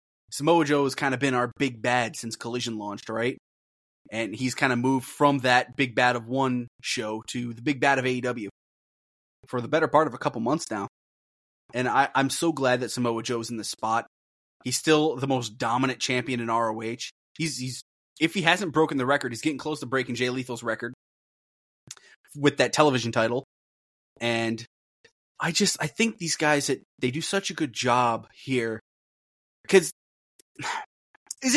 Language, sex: English, male